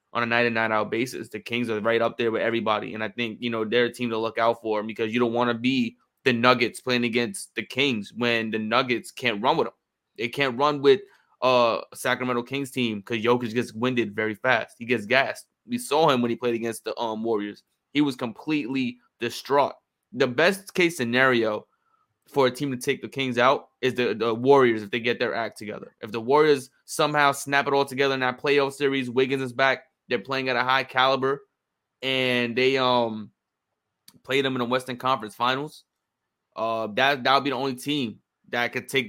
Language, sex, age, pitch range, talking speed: English, male, 20-39, 120-140 Hz, 210 wpm